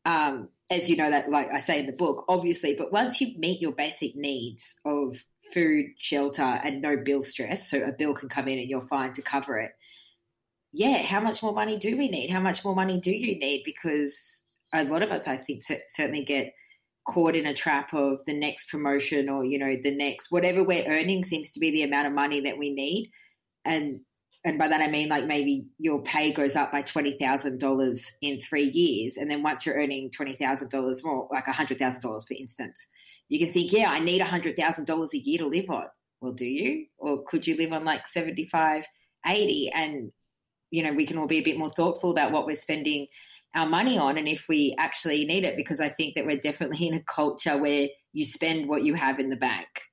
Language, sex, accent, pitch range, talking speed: English, female, Australian, 140-170 Hz, 220 wpm